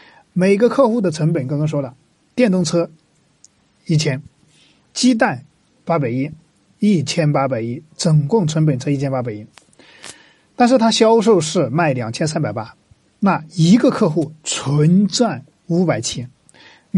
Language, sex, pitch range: Chinese, male, 150-195 Hz